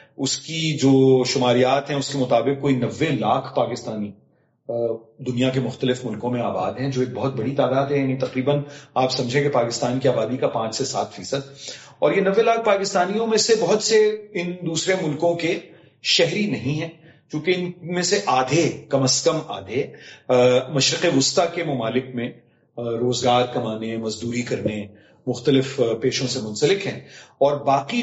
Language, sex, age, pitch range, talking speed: Urdu, male, 40-59, 125-155 Hz, 170 wpm